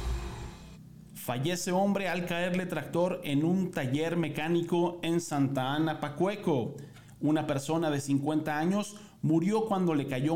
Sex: male